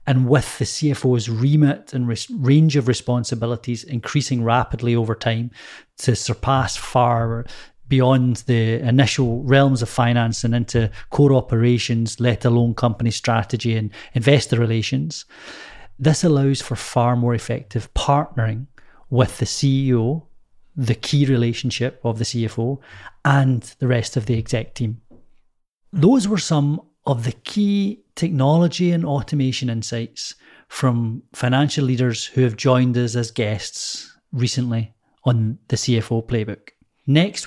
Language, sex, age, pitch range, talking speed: English, male, 30-49, 115-140 Hz, 130 wpm